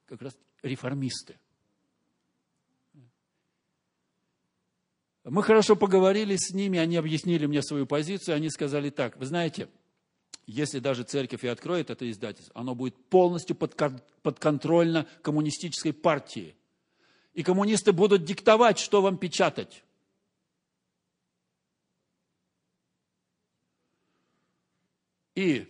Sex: male